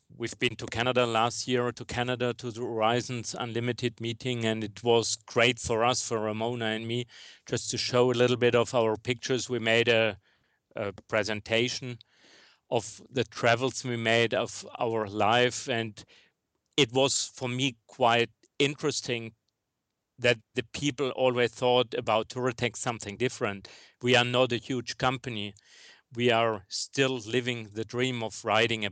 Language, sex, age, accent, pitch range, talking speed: English, male, 40-59, German, 110-125 Hz, 160 wpm